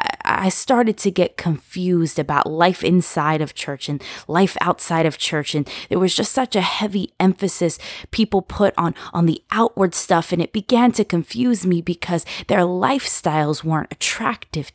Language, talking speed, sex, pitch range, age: English, 165 wpm, female, 160-200 Hz, 20-39